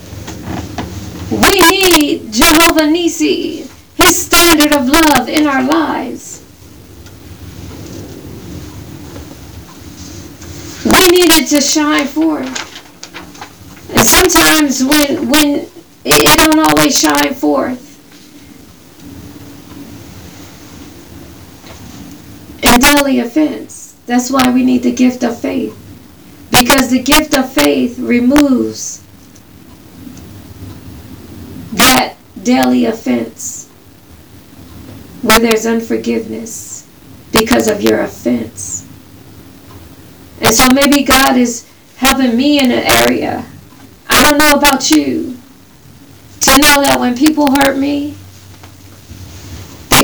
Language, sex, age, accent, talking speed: English, female, 40-59, American, 90 wpm